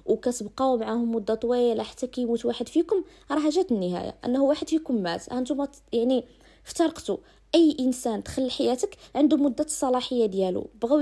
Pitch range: 230-280 Hz